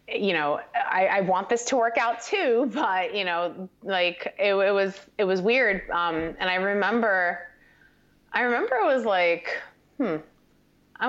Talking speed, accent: 170 wpm, American